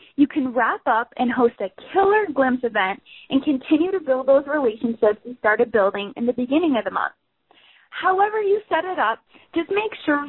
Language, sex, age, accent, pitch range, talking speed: English, female, 20-39, American, 250-335 Hz, 190 wpm